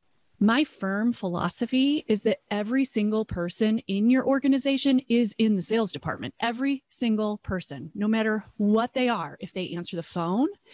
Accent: American